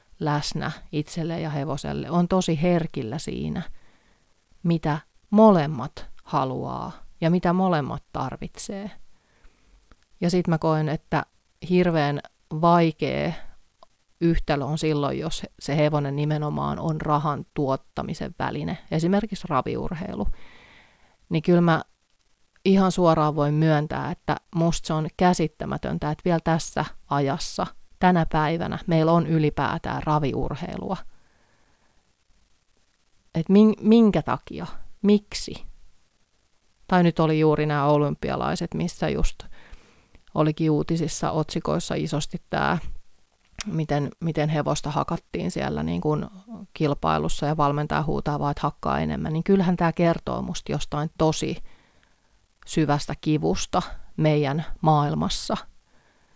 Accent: native